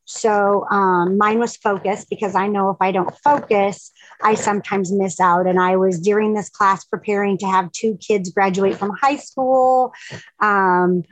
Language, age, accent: English, 30-49, American